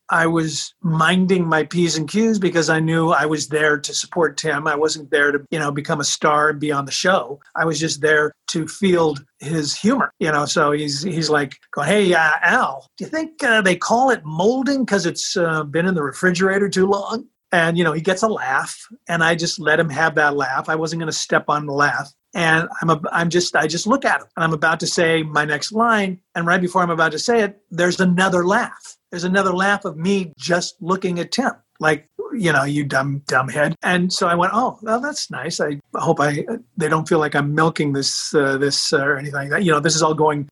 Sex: male